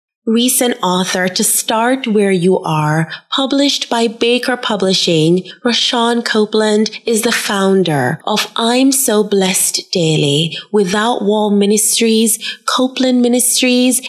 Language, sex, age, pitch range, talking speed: English, female, 20-39, 185-255 Hz, 110 wpm